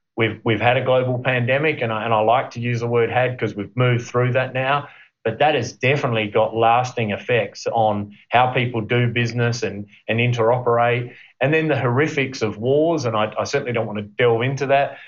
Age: 30-49